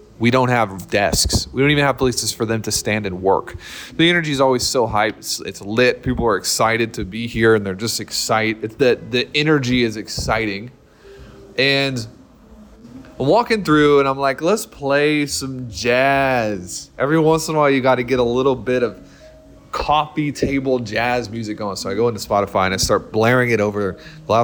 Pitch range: 105-135 Hz